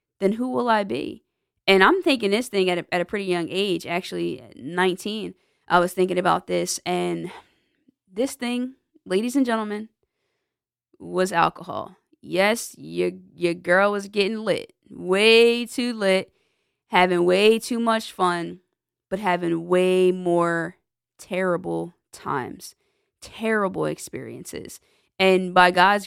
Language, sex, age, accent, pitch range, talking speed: English, female, 20-39, American, 180-215 Hz, 130 wpm